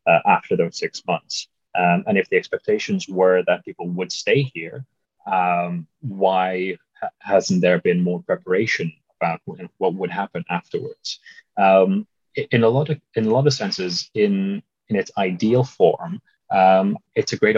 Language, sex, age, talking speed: English, male, 30-49, 155 wpm